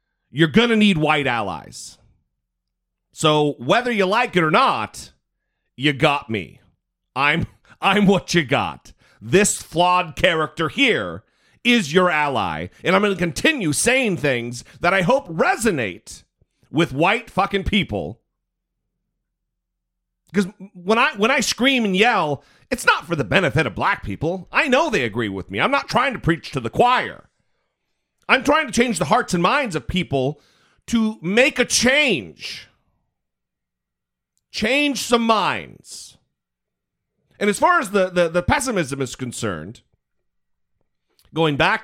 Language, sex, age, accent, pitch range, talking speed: English, male, 40-59, American, 135-230 Hz, 145 wpm